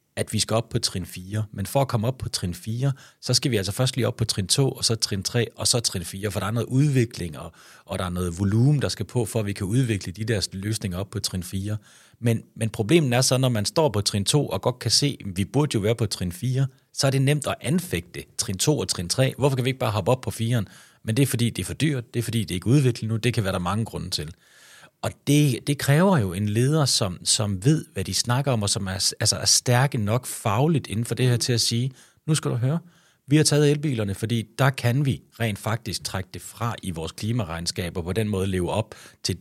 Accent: native